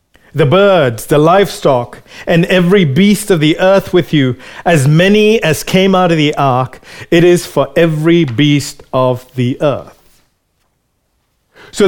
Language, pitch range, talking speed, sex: English, 160-210 Hz, 145 wpm, male